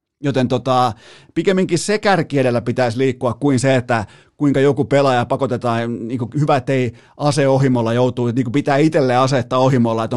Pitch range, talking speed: 125-165 Hz, 140 wpm